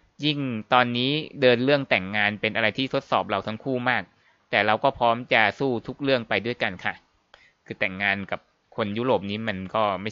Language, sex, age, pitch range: Thai, male, 20-39, 105-130 Hz